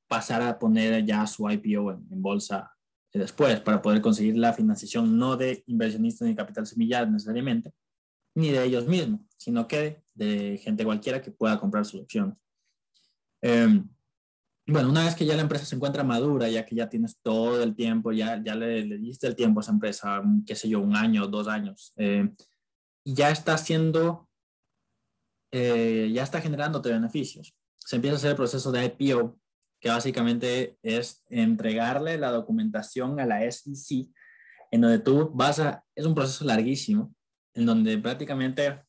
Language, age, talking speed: Spanish, 20-39, 170 wpm